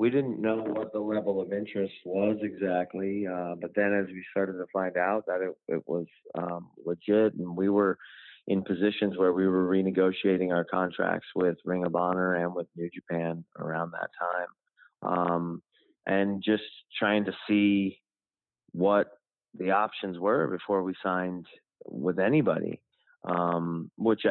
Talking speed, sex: 160 wpm, male